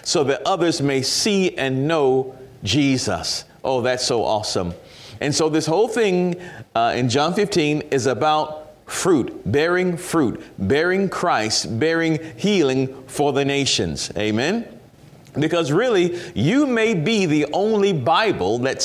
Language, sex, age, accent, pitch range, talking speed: English, male, 40-59, American, 130-185 Hz, 135 wpm